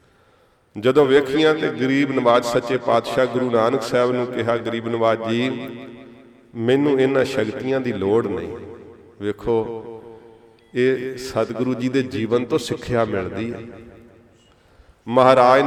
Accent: Indian